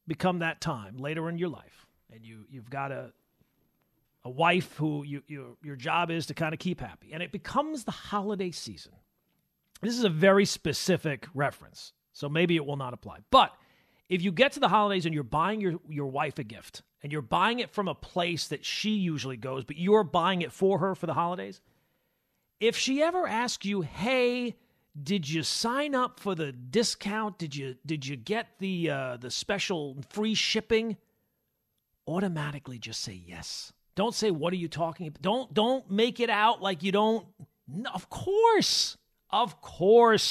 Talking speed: 190 wpm